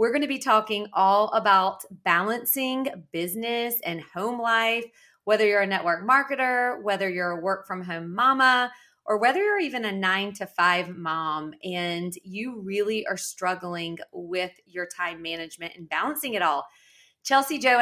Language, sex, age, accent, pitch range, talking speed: English, female, 30-49, American, 185-245 Hz, 160 wpm